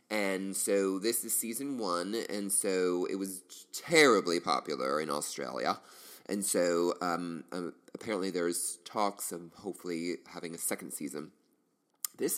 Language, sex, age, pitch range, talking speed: English, male, 30-49, 85-105 Hz, 135 wpm